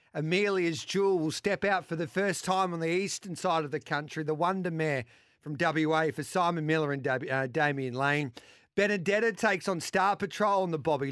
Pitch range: 155-190 Hz